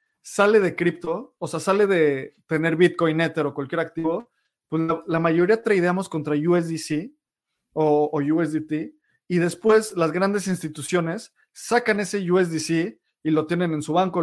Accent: Mexican